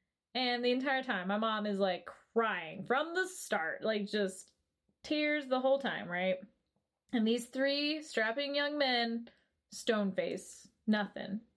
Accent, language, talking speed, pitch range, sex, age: American, English, 145 wpm, 205-285 Hz, female, 20-39